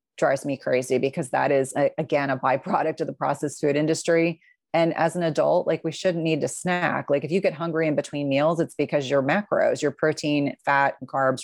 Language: English